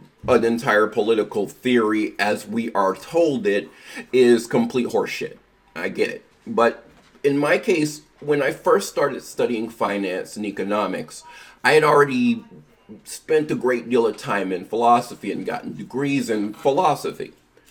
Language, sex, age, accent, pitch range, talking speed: English, male, 30-49, American, 120-180 Hz, 145 wpm